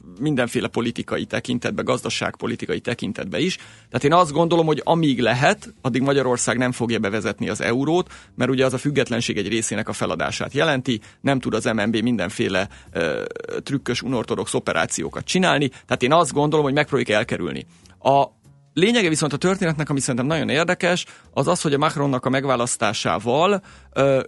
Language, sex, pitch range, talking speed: Hungarian, male, 115-145 Hz, 160 wpm